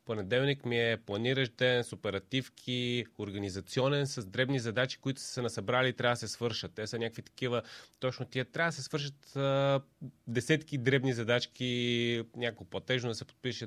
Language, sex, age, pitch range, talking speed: Bulgarian, male, 30-49, 110-130 Hz, 165 wpm